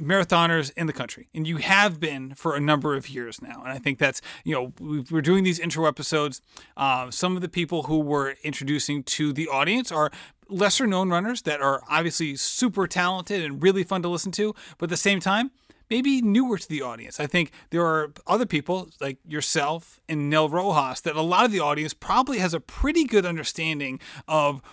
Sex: male